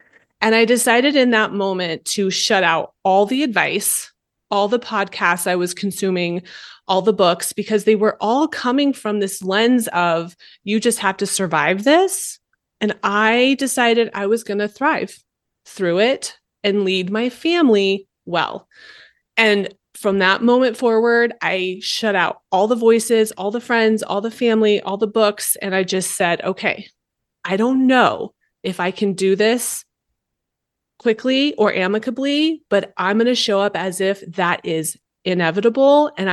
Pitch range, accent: 190-230 Hz, American